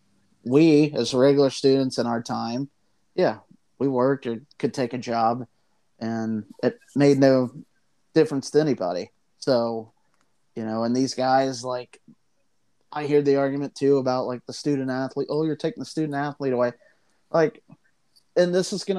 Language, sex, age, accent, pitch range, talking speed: English, male, 30-49, American, 115-140 Hz, 160 wpm